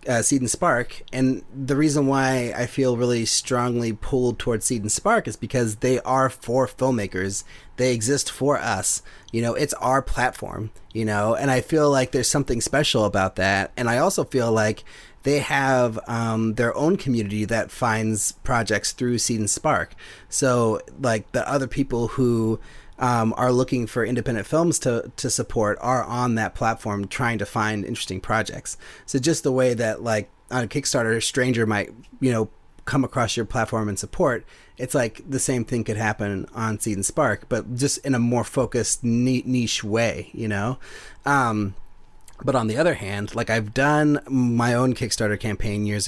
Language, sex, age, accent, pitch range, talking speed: English, male, 30-49, American, 105-130 Hz, 180 wpm